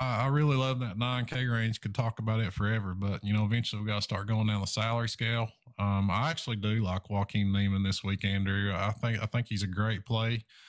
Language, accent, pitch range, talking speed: English, American, 100-115 Hz, 240 wpm